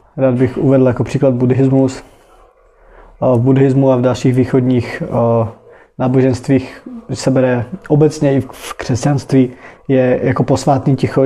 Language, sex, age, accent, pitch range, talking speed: Czech, male, 20-39, native, 130-145 Hz, 125 wpm